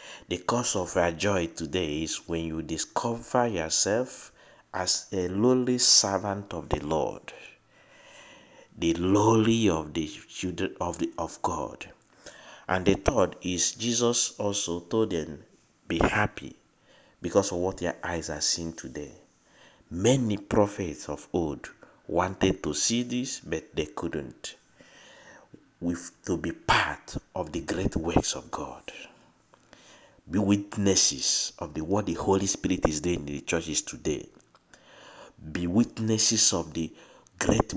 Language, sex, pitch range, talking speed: English, male, 85-110 Hz, 135 wpm